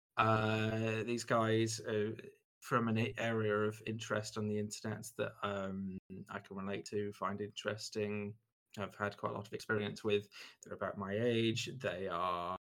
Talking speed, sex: 155 wpm, male